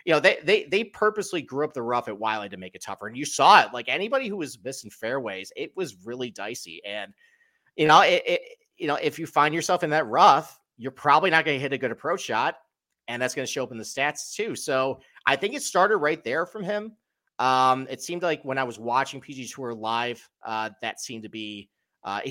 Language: English